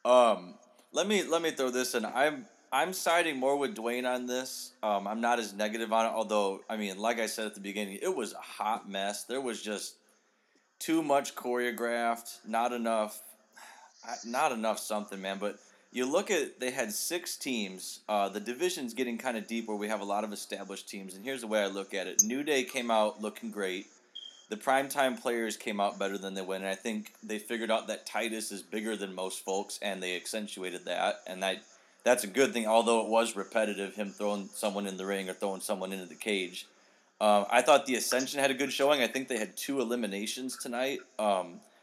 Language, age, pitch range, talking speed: English, 20-39, 100-125 Hz, 215 wpm